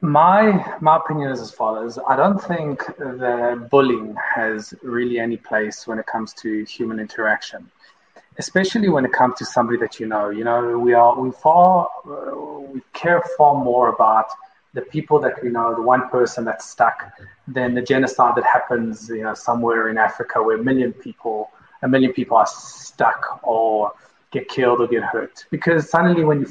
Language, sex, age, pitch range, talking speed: English, male, 30-49, 115-145 Hz, 180 wpm